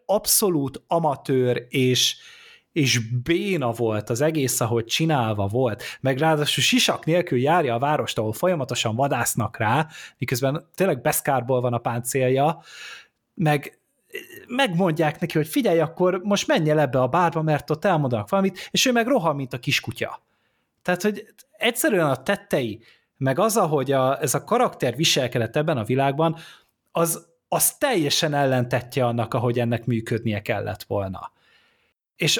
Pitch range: 125-170 Hz